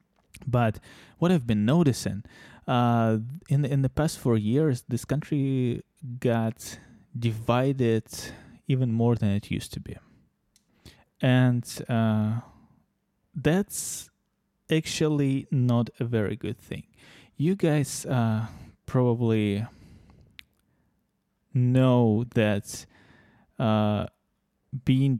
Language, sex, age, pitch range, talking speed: English, male, 20-39, 105-130 Hz, 100 wpm